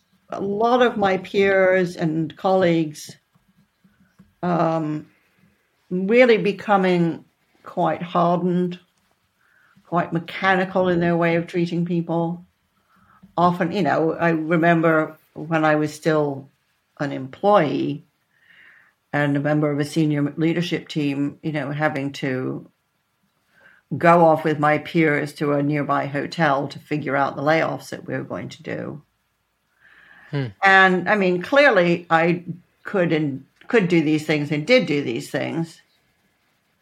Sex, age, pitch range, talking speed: female, 60-79, 150-180 Hz, 130 wpm